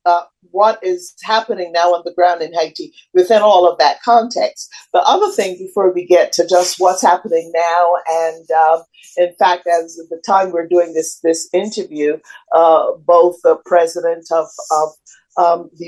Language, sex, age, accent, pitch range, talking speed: English, female, 50-69, American, 165-260 Hz, 180 wpm